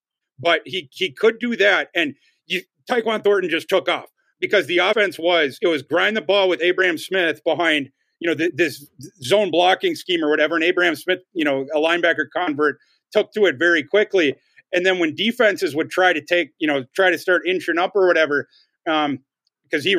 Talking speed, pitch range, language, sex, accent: 200 wpm, 160-195 Hz, English, male, American